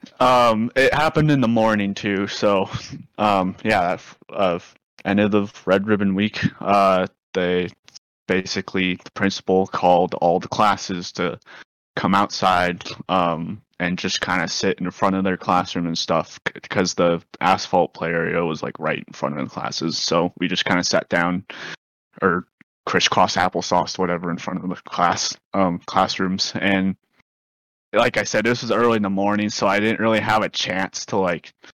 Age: 20-39